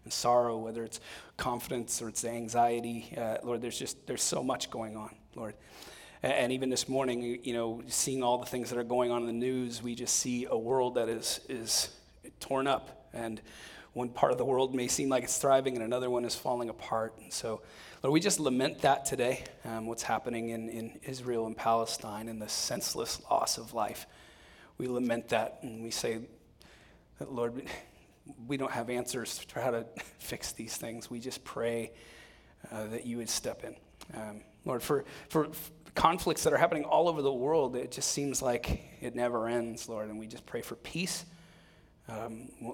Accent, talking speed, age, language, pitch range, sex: American, 195 wpm, 30-49, English, 115-130 Hz, male